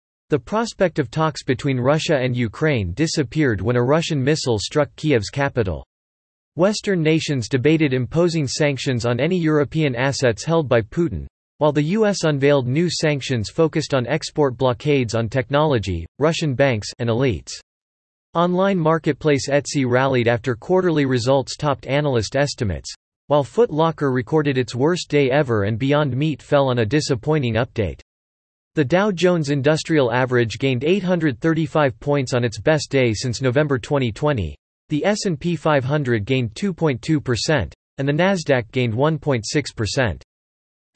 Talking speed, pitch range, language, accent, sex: 140 wpm, 120-155 Hz, English, American, male